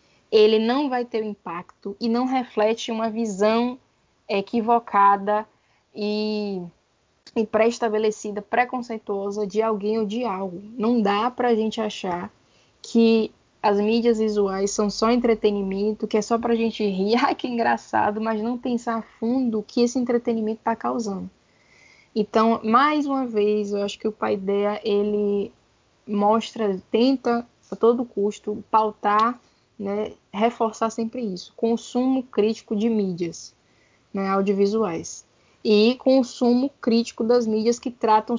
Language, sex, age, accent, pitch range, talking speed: Portuguese, female, 10-29, Brazilian, 210-240 Hz, 135 wpm